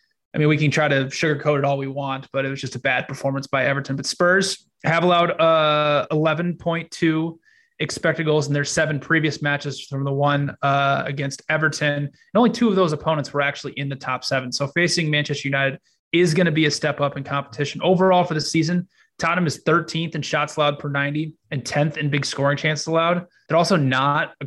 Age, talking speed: 20-39, 210 wpm